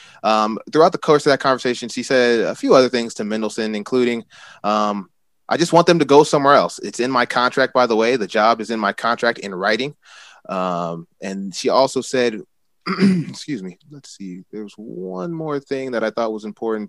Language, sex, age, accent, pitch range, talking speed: English, male, 20-39, American, 110-135 Hz, 205 wpm